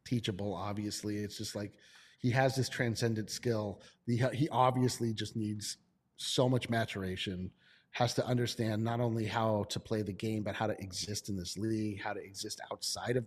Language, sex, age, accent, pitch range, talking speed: English, male, 30-49, American, 110-130 Hz, 180 wpm